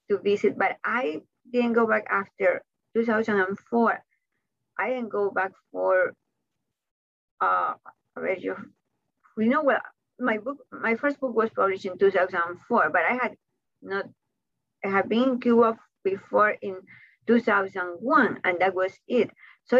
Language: English